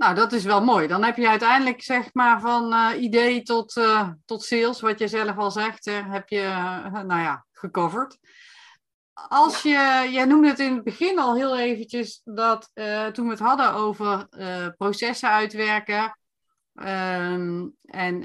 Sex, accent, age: female, Dutch, 30-49